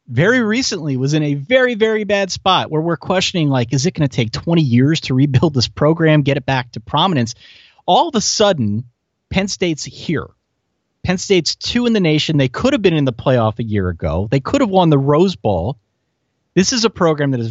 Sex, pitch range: male, 120-170 Hz